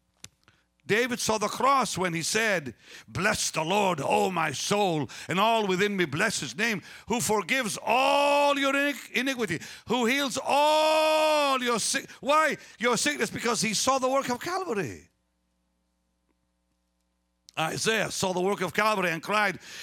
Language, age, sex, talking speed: English, 60-79, male, 145 wpm